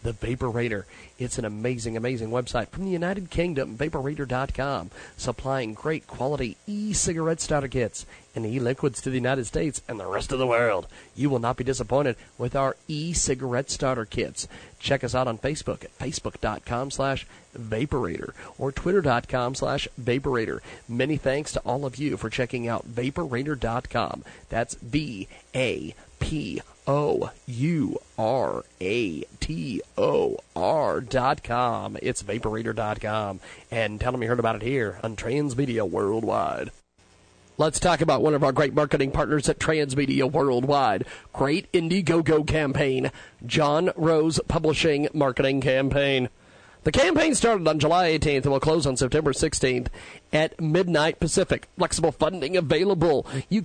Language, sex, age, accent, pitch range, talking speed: English, male, 40-59, American, 125-160 Hz, 145 wpm